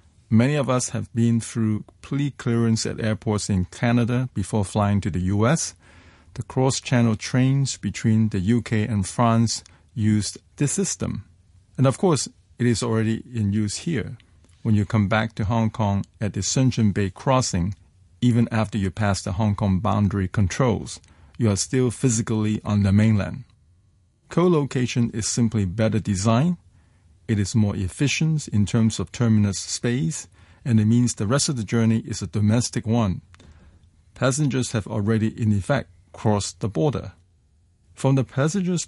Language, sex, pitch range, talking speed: English, male, 95-120 Hz, 155 wpm